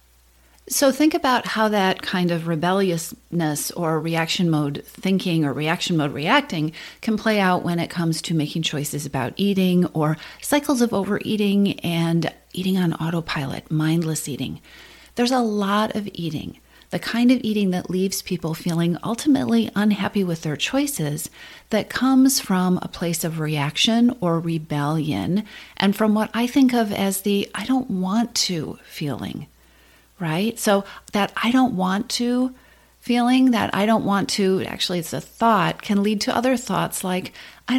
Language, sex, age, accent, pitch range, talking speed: English, female, 40-59, American, 165-230 Hz, 160 wpm